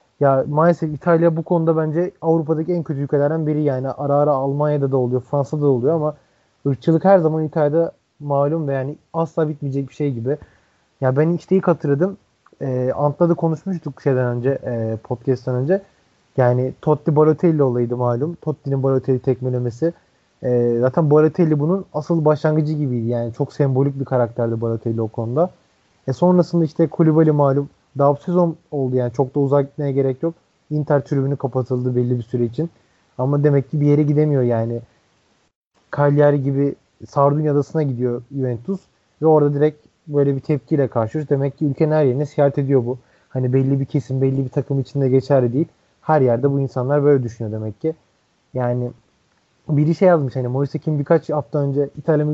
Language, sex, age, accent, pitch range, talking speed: Turkish, male, 30-49, native, 130-155 Hz, 165 wpm